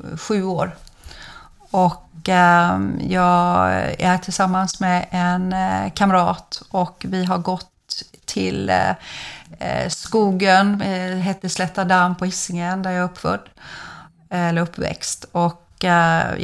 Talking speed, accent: 115 wpm, native